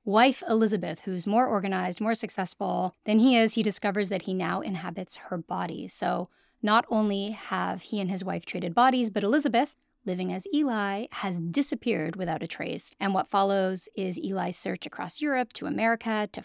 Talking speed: 180 wpm